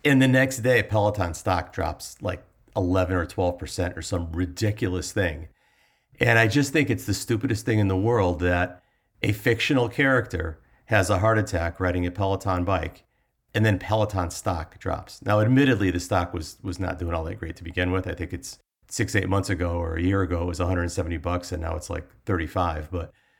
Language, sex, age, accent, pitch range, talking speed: English, male, 50-69, American, 90-115 Hz, 200 wpm